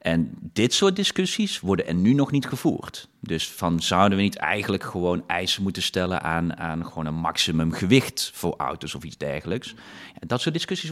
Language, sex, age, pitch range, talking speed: Dutch, male, 30-49, 90-115 Hz, 185 wpm